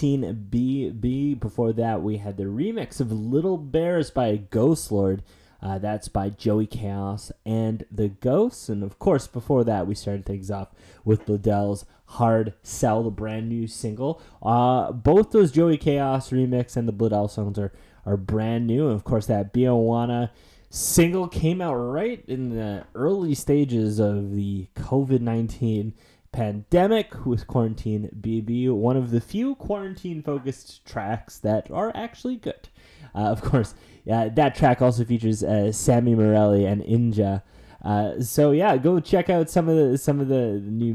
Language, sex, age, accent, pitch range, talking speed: English, male, 20-39, American, 105-140 Hz, 160 wpm